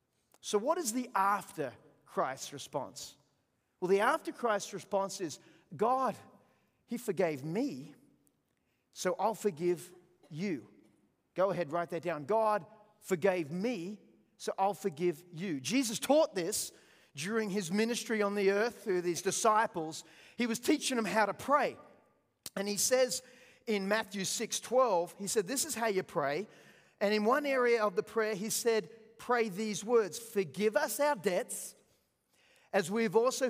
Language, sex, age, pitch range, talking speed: English, male, 40-59, 195-240 Hz, 150 wpm